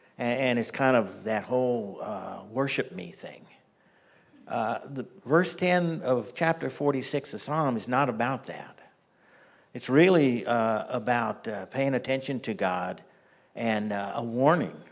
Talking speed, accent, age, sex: 145 wpm, American, 60-79, male